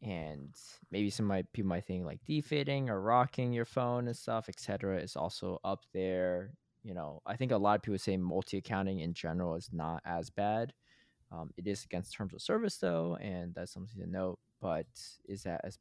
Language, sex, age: English, male, 20-39